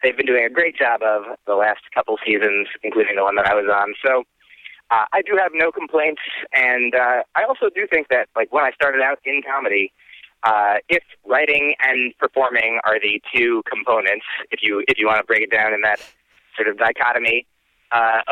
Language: English